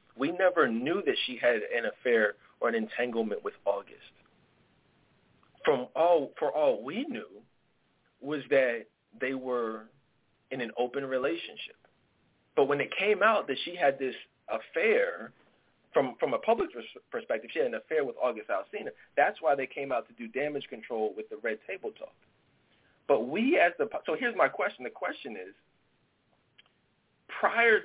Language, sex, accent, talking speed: English, male, American, 160 wpm